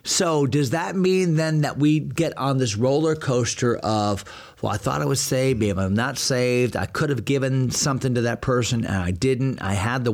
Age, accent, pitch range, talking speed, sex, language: 40-59, American, 120-150 Hz, 220 wpm, male, English